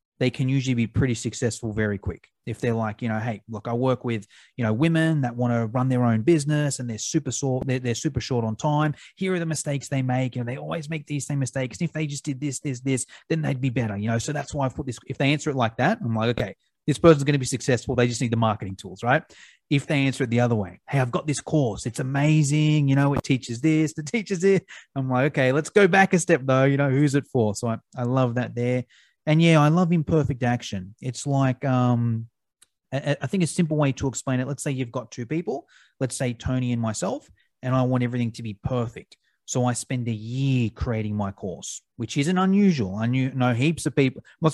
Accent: Australian